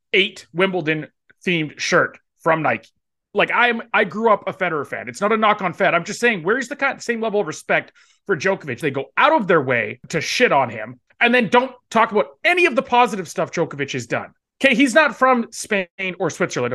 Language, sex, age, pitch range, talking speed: English, male, 30-49, 165-235 Hz, 220 wpm